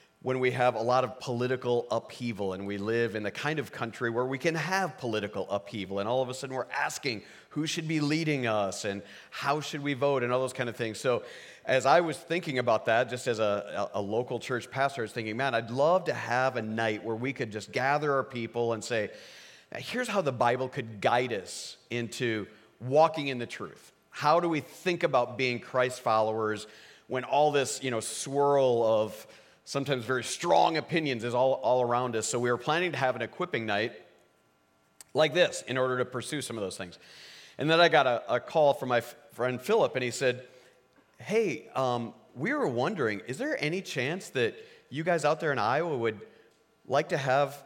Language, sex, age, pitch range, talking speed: English, male, 40-59, 115-145 Hz, 210 wpm